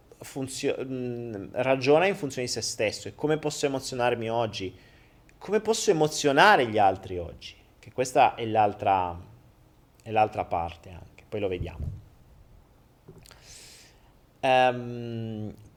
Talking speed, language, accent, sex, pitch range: 120 wpm, Italian, native, male, 110-155 Hz